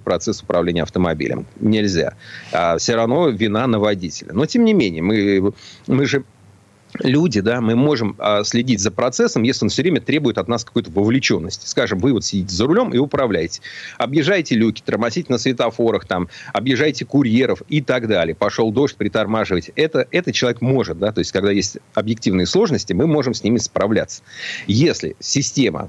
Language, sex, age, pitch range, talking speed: Russian, male, 40-59, 105-135 Hz, 170 wpm